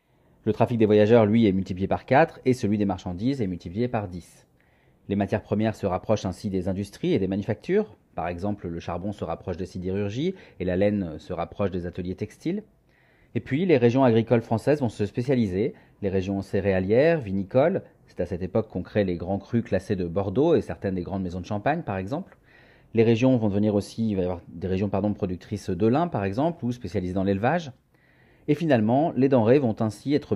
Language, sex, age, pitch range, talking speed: French, male, 30-49, 95-120 Hz, 210 wpm